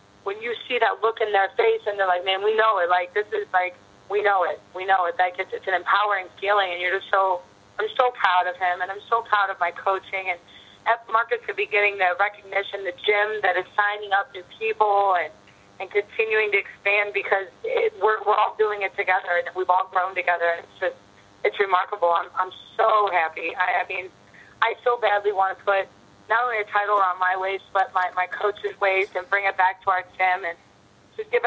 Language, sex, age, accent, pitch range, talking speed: English, female, 30-49, American, 180-205 Hz, 230 wpm